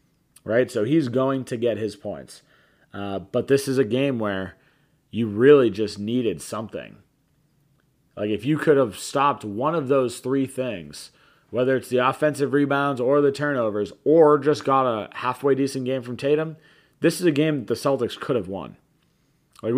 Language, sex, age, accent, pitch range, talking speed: English, male, 30-49, American, 120-145 Hz, 175 wpm